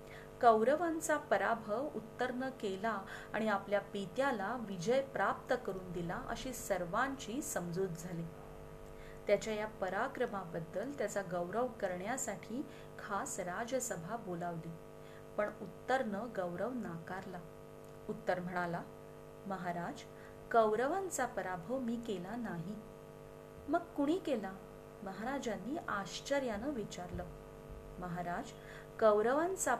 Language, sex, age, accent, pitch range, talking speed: Marathi, female, 30-49, native, 190-250 Hz, 65 wpm